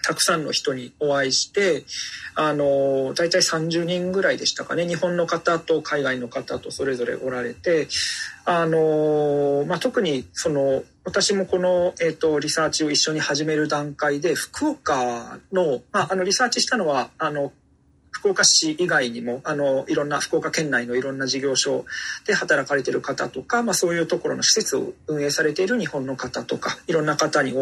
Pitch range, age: 140-185 Hz, 40-59